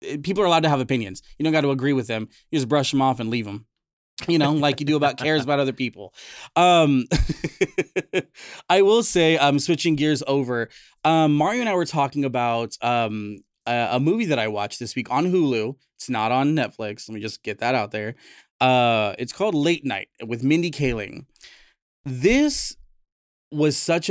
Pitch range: 115-150 Hz